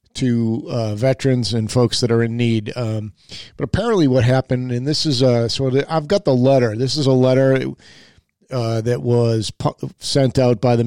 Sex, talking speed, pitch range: male, 200 wpm, 115-130 Hz